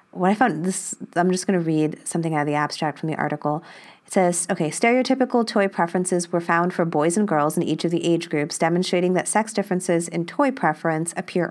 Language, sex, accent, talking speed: English, female, American, 225 wpm